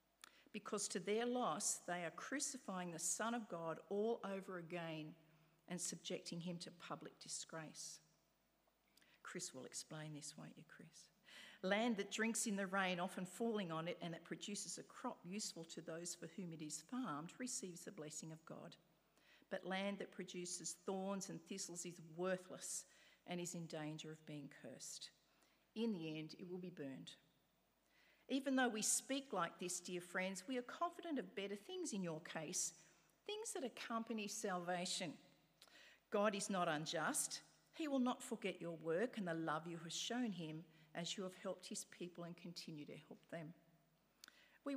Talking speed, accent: 170 wpm, Australian